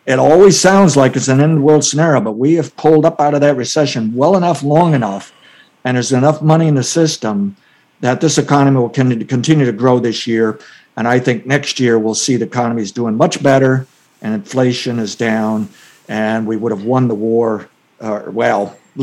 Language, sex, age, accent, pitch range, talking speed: English, male, 50-69, American, 115-145 Hz, 205 wpm